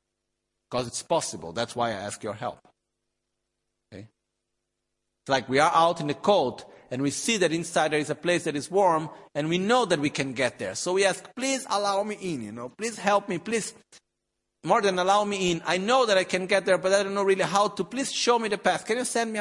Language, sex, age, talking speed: Italian, male, 50-69, 240 wpm